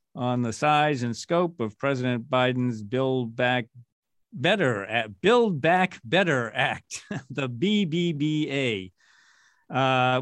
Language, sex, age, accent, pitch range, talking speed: English, male, 50-69, American, 125-160 Hz, 105 wpm